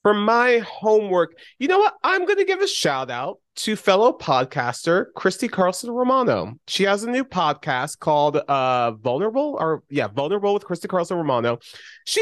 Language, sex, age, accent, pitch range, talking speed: English, male, 30-49, American, 130-175 Hz, 170 wpm